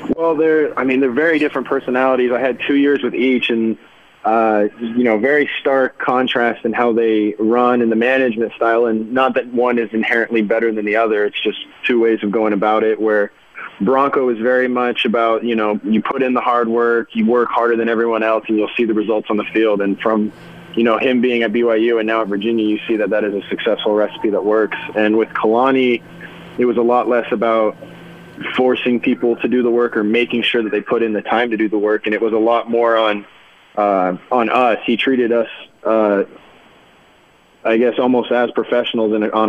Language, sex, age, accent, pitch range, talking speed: English, male, 20-39, American, 110-120 Hz, 220 wpm